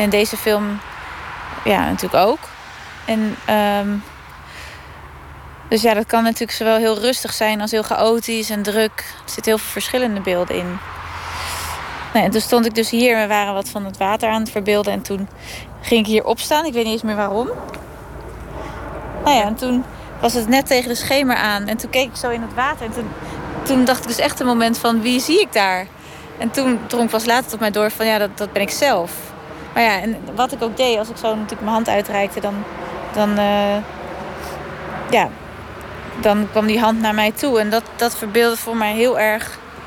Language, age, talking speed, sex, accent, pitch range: Dutch, 20-39, 210 wpm, female, Dutch, 200-225 Hz